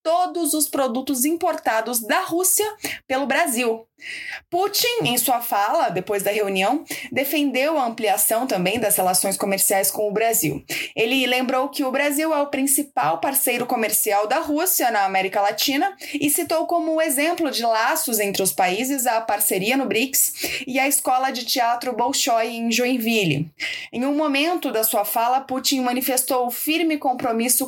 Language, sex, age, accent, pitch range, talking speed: Portuguese, female, 20-39, Brazilian, 230-310 Hz, 155 wpm